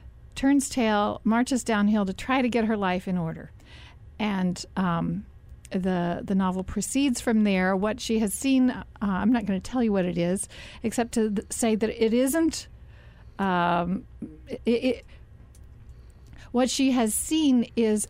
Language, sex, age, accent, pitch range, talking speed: English, female, 40-59, American, 185-235 Hz, 160 wpm